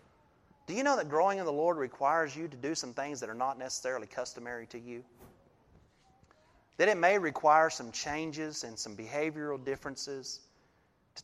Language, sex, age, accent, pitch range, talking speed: English, male, 30-49, American, 120-150 Hz, 170 wpm